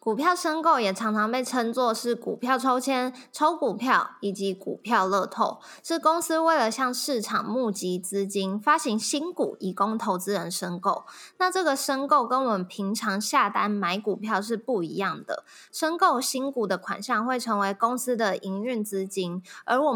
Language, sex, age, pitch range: Chinese, female, 20-39, 195-255 Hz